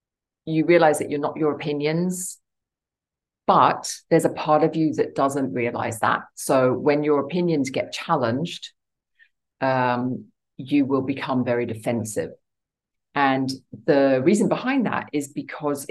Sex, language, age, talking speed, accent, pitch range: female, English, 40-59, 135 wpm, British, 125-170 Hz